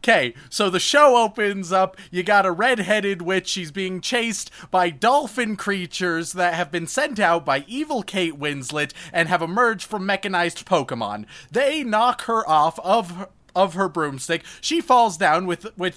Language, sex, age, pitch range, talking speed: English, male, 30-49, 170-215 Hz, 170 wpm